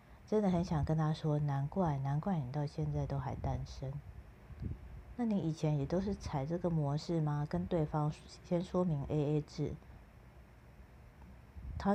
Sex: female